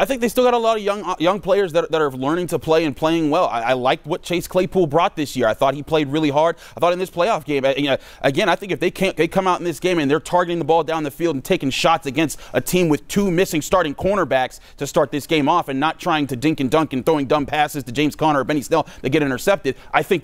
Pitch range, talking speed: 130-170 Hz, 295 wpm